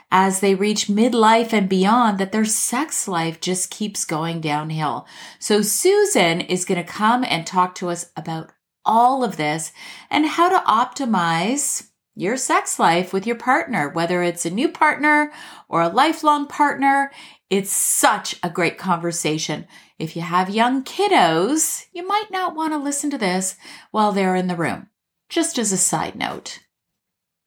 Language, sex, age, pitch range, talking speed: English, female, 30-49, 180-255 Hz, 165 wpm